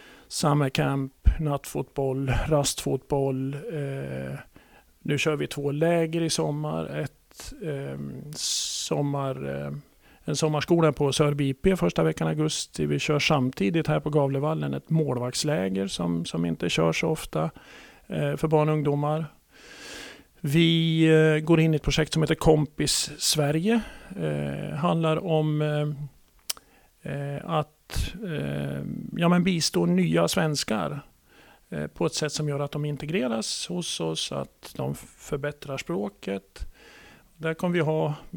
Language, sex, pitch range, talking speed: Swedish, male, 100-160 Hz, 130 wpm